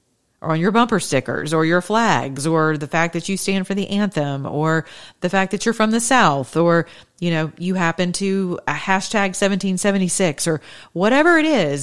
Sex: female